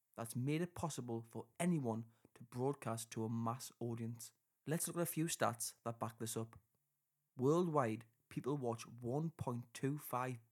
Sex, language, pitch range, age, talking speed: male, English, 115-140 Hz, 30-49, 150 wpm